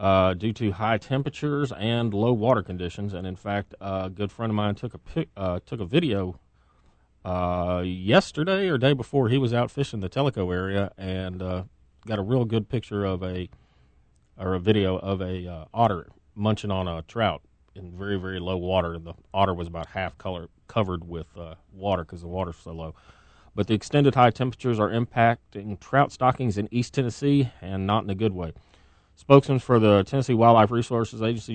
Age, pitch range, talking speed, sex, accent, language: 30-49, 95-115 Hz, 195 wpm, male, American, English